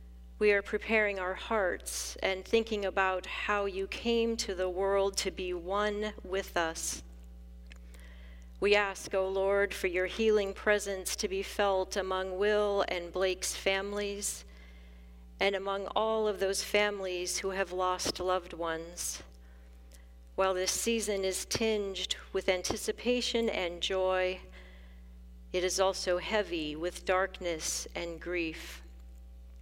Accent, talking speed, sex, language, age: American, 130 wpm, female, English, 40-59